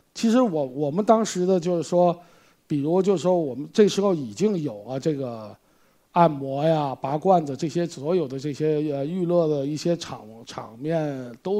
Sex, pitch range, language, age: male, 140-190 Hz, Chinese, 50-69